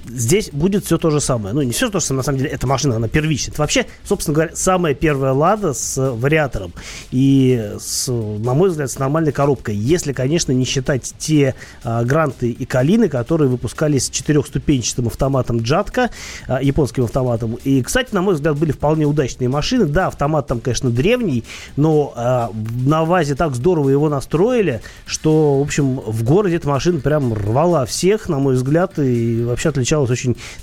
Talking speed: 180 wpm